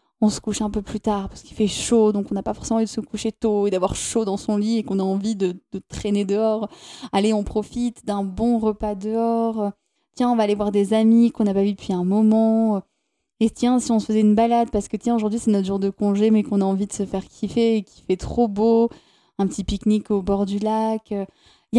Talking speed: 260 wpm